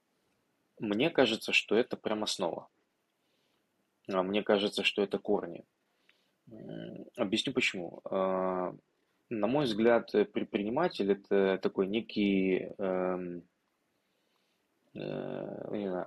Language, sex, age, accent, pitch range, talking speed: Ukrainian, male, 20-39, native, 95-120 Hz, 75 wpm